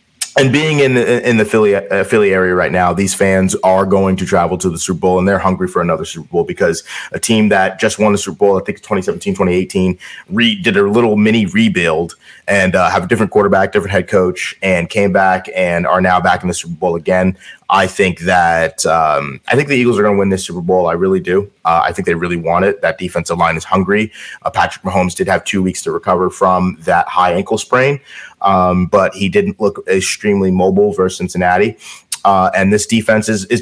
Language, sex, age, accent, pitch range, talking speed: English, male, 30-49, American, 90-110 Hz, 225 wpm